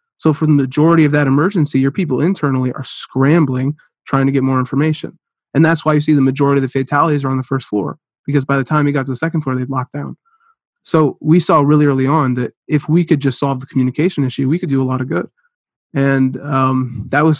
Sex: male